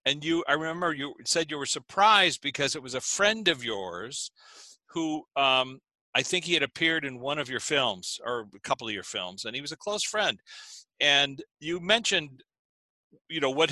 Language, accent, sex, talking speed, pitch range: English, American, male, 200 wpm, 130-165 Hz